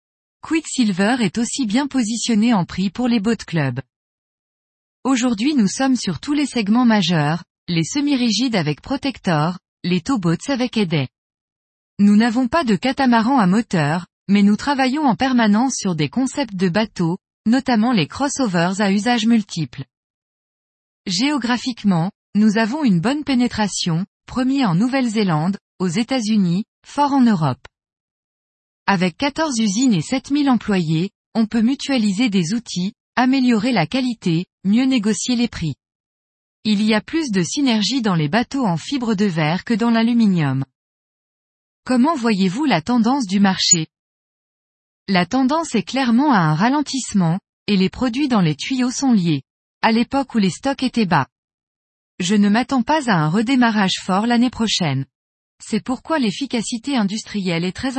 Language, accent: French, French